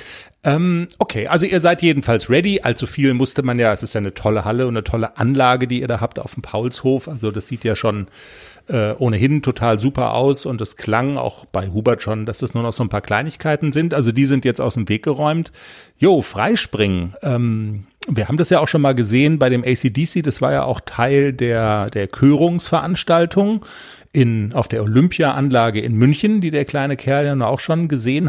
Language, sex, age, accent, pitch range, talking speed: German, male, 40-59, German, 115-165 Hz, 210 wpm